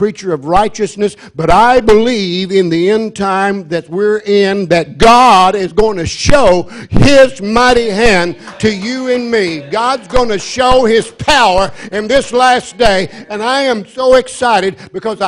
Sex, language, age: male, English, 60-79